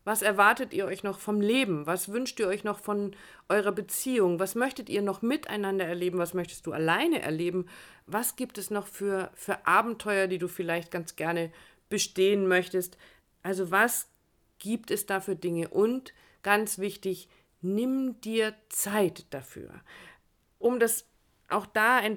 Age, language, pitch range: 50-69, German, 180-220 Hz